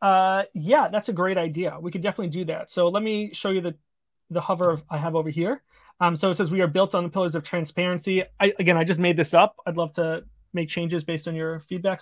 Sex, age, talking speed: male, 30-49, 255 wpm